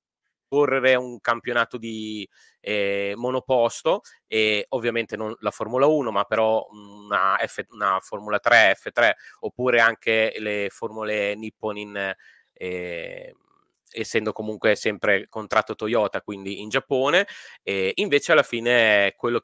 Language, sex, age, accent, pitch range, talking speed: Italian, male, 30-49, native, 105-125 Hz, 115 wpm